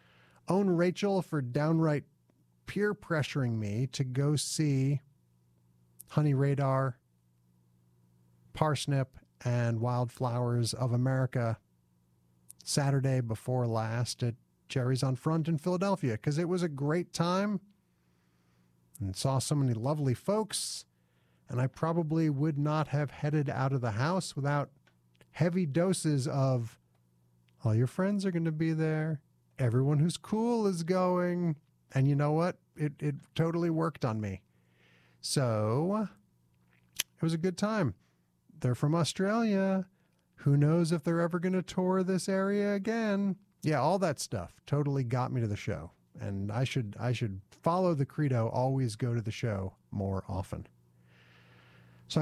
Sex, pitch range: male, 100-160 Hz